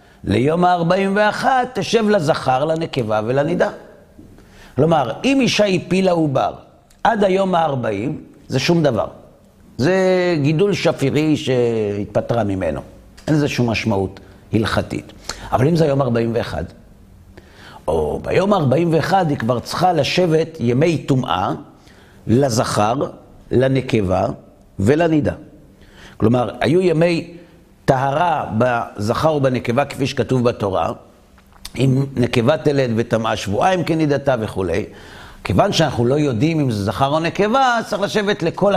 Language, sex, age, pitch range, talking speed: Hebrew, male, 50-69, 115-180 Hz, 115 wpm